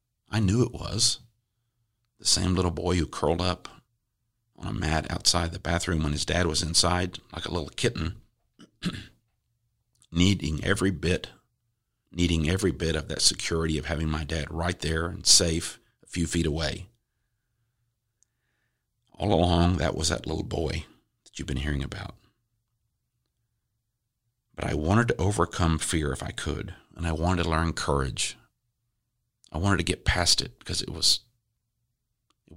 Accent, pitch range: American, 80-115 Hz